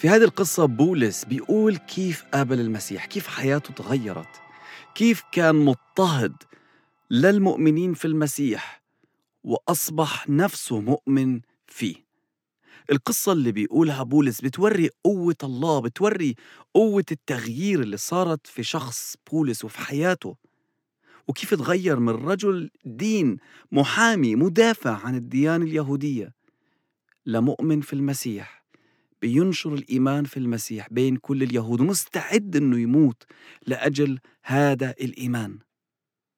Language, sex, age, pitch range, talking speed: English, male, 40-59, 120-160 Hz, 105 wpm